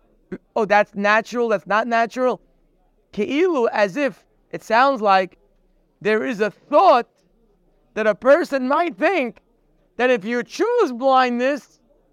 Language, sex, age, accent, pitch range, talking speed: English, male, 30-49, American, 185-245 Hz, 130 wpm